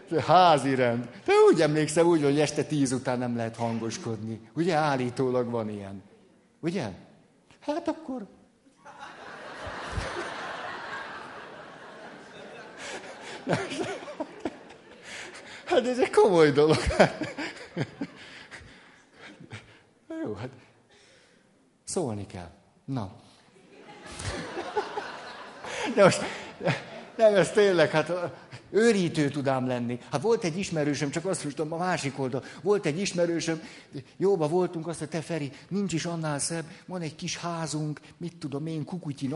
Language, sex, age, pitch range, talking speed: Hungarian, male, 60-79, 125-170 Hz, 105 wpm